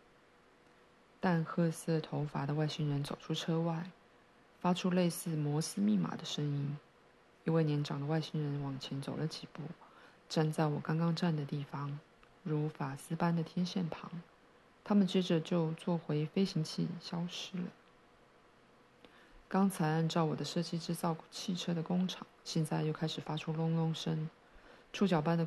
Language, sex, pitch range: Chinese, female, 155-175 Hz